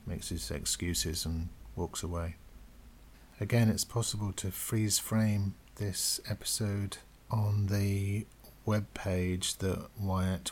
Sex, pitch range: male, 90-100 Hz